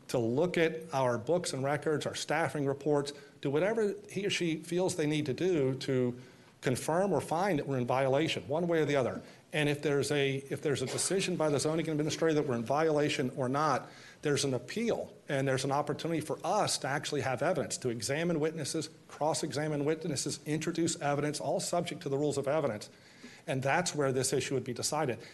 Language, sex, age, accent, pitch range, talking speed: English, male, 40-59, American, 130-155 Hz, 205 wpm